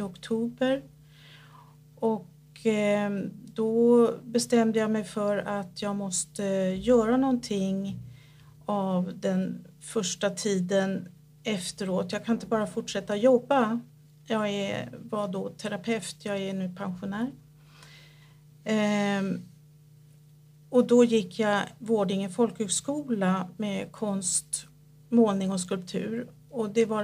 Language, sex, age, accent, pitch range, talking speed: Swedish, female, 50-69, native, 150-225 Hz, 100 wpm